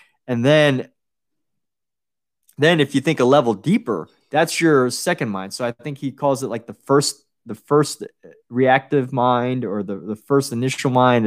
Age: 20-39